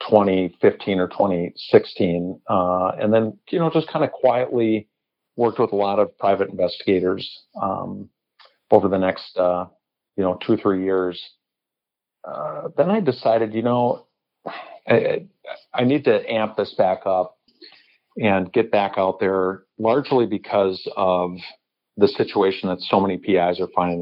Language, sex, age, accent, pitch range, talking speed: English, male, 50-69, American, 90-105 Hz, 145 wpm